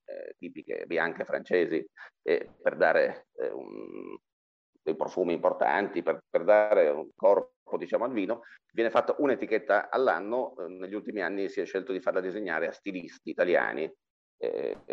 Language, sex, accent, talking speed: Italian, male, native, 155 wpm